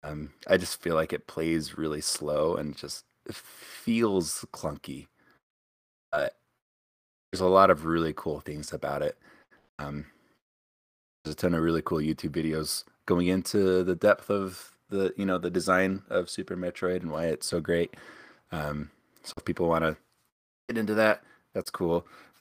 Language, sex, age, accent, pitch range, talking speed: English, male, 20-39, American, 80-95 Hz, 165 wpm